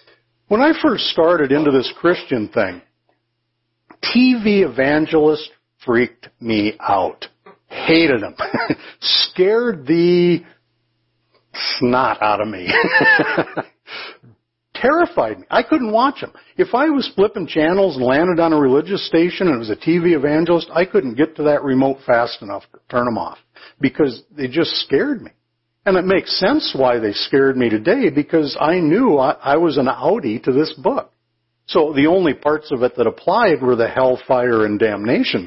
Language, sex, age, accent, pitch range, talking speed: English, male, 60-79, American, 115-180 Hz, 160 wpm